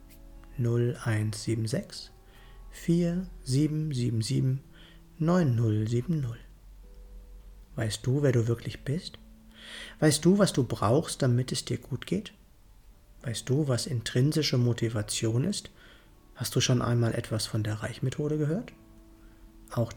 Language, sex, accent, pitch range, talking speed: German, male, German, 110-140 Hz, 110 wpm